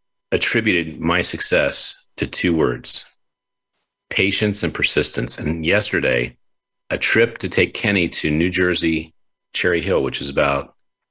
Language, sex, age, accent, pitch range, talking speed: English, male, 40-59, American, 80-100 Hz, 130 wpm